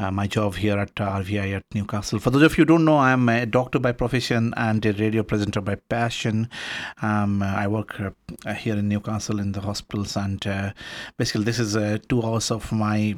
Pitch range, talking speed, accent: 105-125 Hz, 215 wpm, native